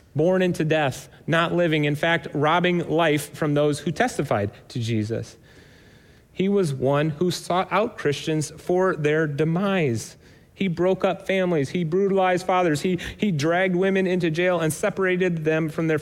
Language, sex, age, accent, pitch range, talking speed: English, male, 30-49, American, 130-180 Hz, 160 wpm